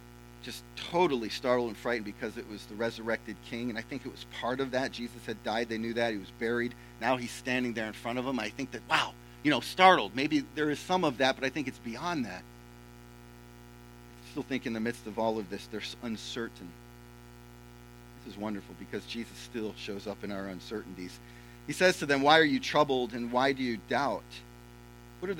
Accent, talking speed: American, 220 wpm